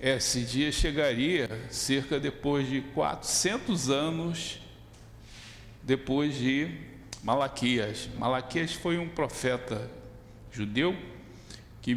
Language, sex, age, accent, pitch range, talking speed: Portuguese, male, 60-79, Brazilian, 110-140 Hz, 85 wpm